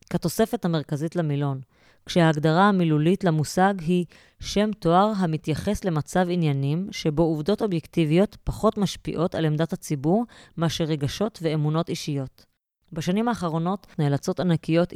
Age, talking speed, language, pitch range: 20-39, 110 wpm, Hebrew, 150-185 Hz